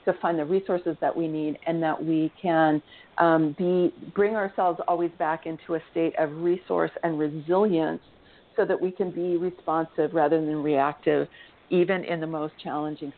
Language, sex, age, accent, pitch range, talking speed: English, female, 50-69, American, 160-180 Hz, 170 wpm